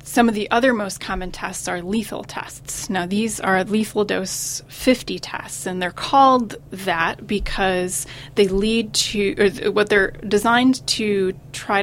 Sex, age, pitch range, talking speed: female, 20-39, 175-220 Hz, 150 wpm